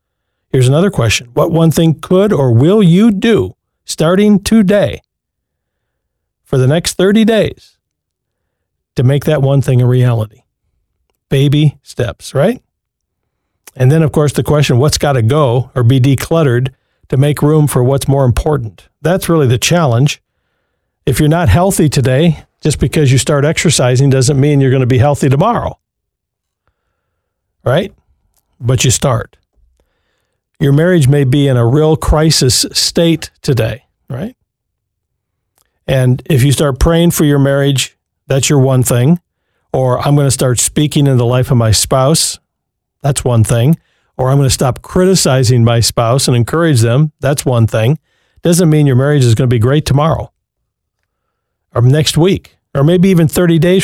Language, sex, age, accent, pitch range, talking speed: English, male, 50-69, American, 125-160 Hz, 160 wpm